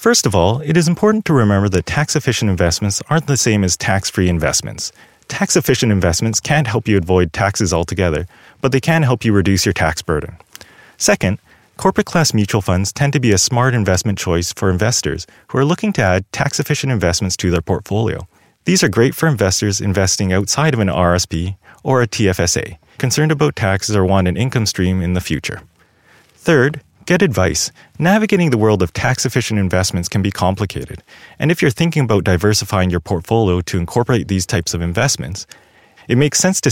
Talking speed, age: 180 wpm, 30-49